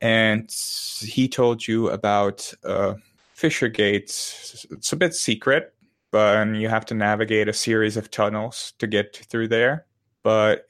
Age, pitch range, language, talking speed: 20-39, 105-120 Hz, English, 145 wpm